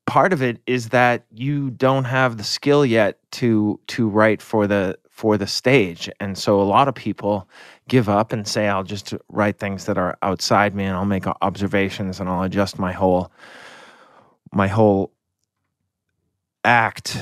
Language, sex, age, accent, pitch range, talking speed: English, male, 30-49, American, 100-120 Hz, 170 wpm